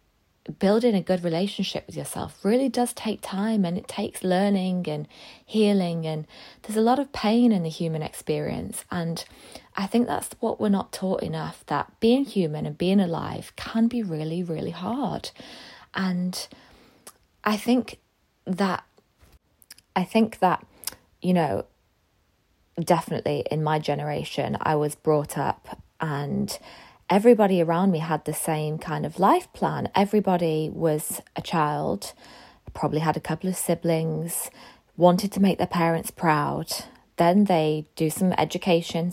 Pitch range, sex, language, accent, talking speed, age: 160-195 Hz, female, English, British, 145 wpm, 20-39